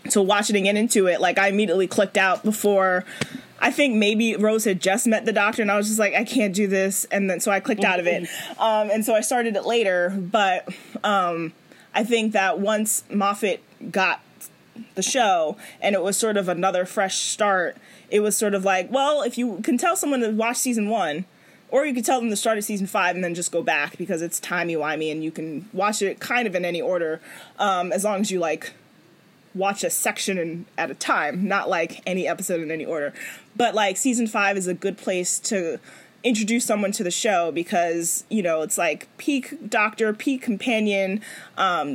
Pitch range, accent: 185-225 Hz, American